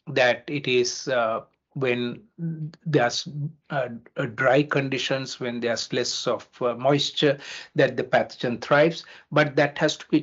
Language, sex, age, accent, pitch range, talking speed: English, male, 60-79, Indian, 125-150 Hz, 140 wpm